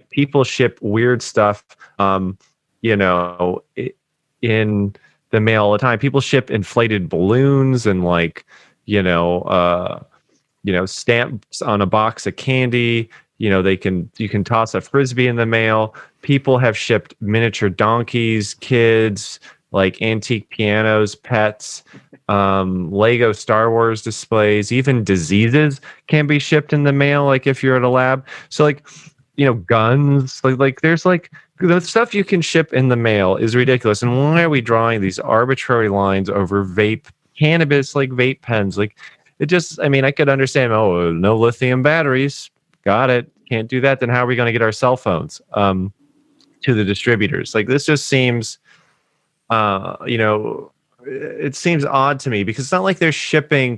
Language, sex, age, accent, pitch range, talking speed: English, male, 30-49, American, 105-135 Hz, 170 wpm